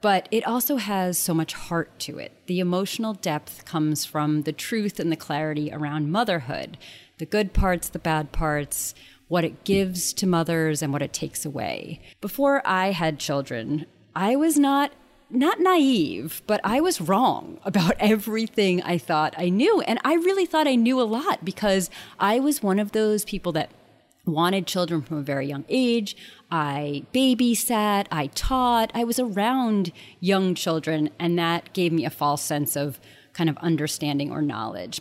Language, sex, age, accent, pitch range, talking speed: English, female, 30-49, American, 150-220 Hz, 175 wpm